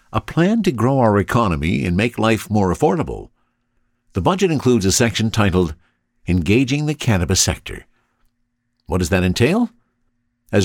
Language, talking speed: English, 145 wpm